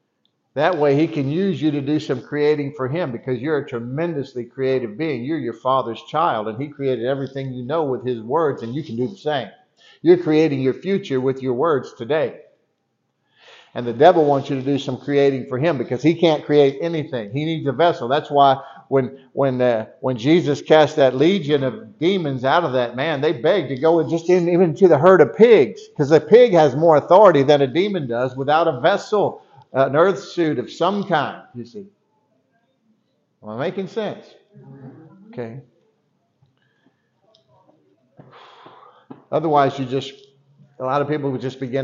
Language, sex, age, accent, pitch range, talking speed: English, male, 50-69, American, 125-155 Hz, 190 wpm